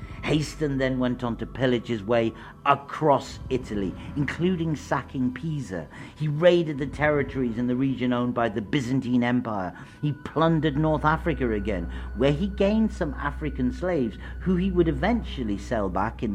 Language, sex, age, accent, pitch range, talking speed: English, male, 50-69, British, 100-150 Hz, 160 wpm